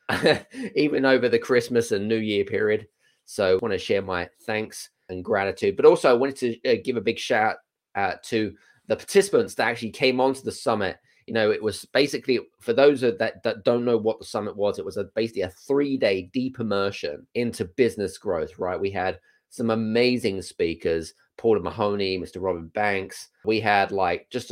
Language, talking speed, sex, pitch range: English, 190 wpm, male, 110-140 Hz